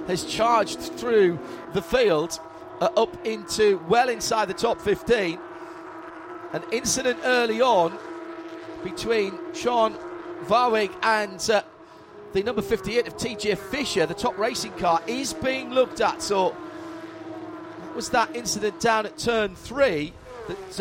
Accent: British